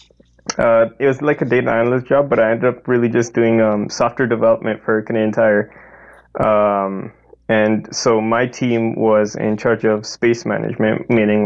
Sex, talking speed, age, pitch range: male, 175 wpm, 20-39, 105-115 Hz